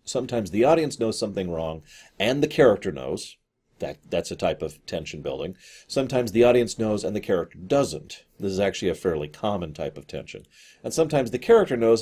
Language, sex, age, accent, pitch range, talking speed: English, male, 40-59, American, 95-135 Hz, 195 wpm